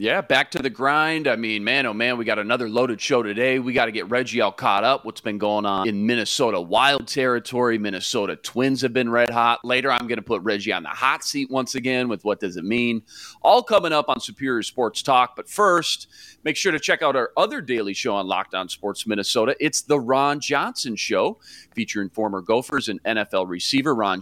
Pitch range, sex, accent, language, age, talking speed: 110-140 Hz, male, American, English, 40-59, 220 wpm